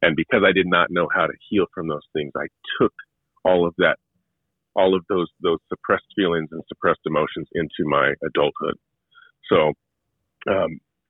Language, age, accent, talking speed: English, 40-59, American, 170 wpm